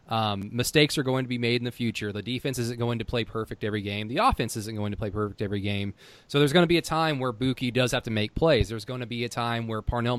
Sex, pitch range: male, 110-135 Hz